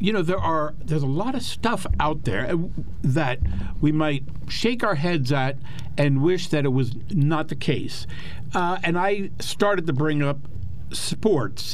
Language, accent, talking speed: English, American, 175 wpm